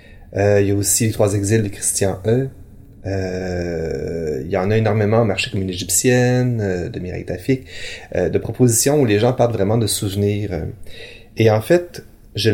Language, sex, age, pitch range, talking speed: French, male, 30-49, 100-120 Hz, 190 wpm